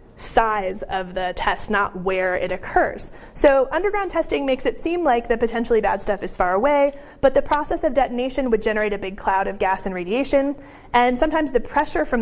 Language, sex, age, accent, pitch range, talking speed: English, female, 30-49, American, 200-265 Hz, 200 wpm